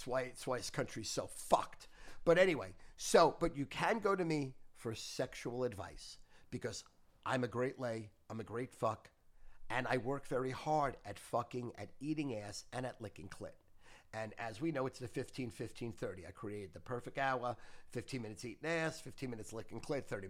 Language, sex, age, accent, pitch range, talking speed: English, male, 50-69, American, 120-160 Hz, 195 wpm